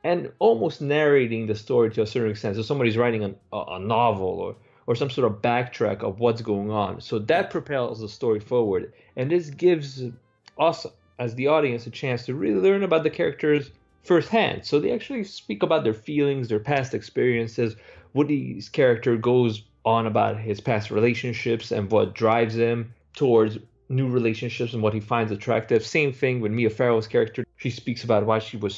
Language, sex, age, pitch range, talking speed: English, male, 20-39, 110-145 Hz, 185 wpm